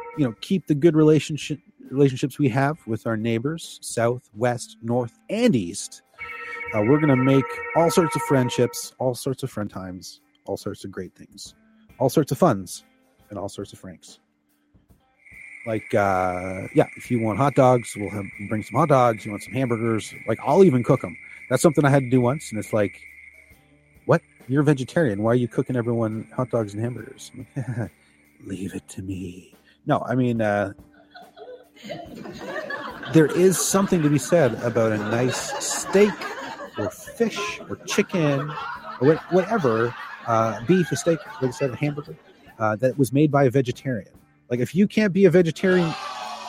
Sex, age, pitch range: male, 30-49, 110-160 Hz